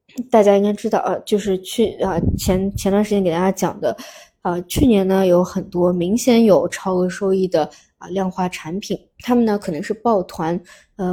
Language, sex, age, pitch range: Chinese, female, 20-39, 180-225 Hz